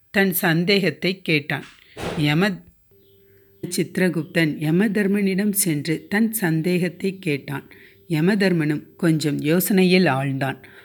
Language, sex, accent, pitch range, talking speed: Tamil, female, native, 150-190 Hz, 75 wpm